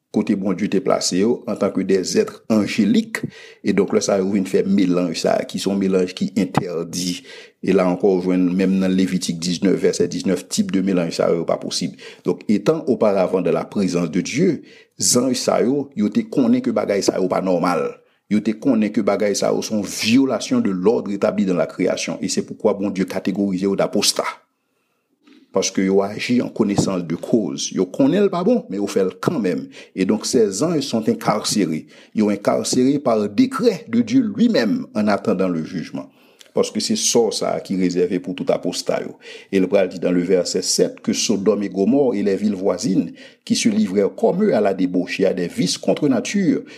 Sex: male